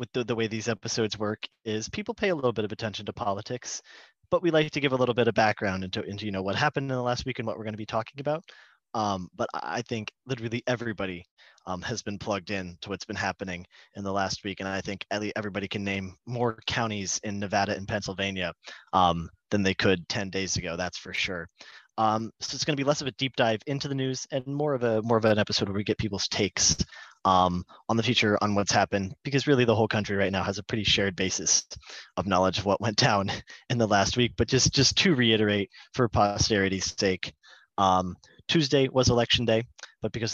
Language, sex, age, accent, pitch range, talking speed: English, male, 30-49, American, 100-120 Hz, 235 wpm